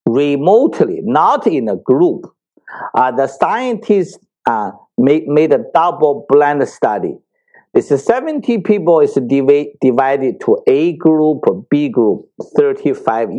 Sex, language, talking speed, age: male, English, 125 wpm, 50-69